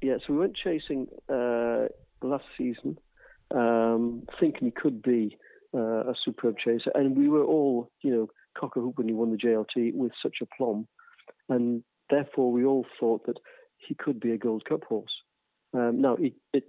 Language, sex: English, male